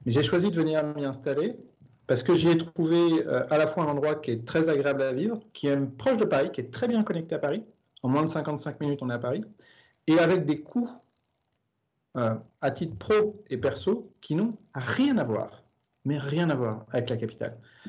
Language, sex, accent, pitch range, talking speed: French, male, French, 135-185 Hz, 225 wpm